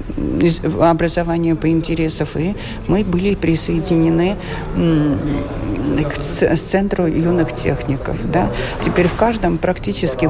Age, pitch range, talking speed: 50-69, 160-195 Hz, 95 wpm